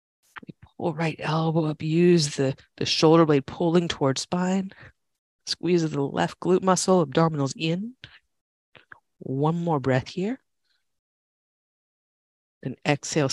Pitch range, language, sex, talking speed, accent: 135-170 Hz, English, female, 115 wpm, American